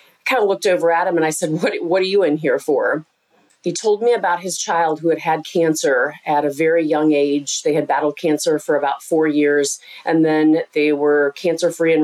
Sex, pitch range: female, 150-185 Hz